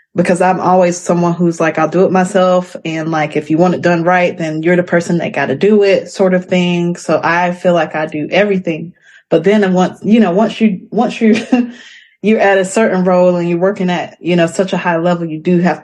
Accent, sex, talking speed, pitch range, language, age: American, female, 240 wpm, 160-190 Hz, English, 20-39